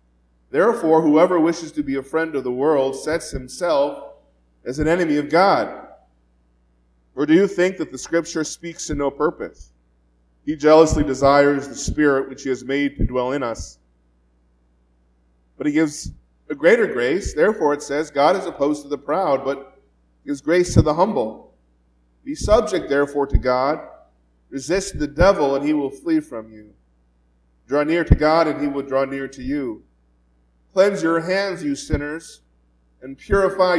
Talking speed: 165 wpm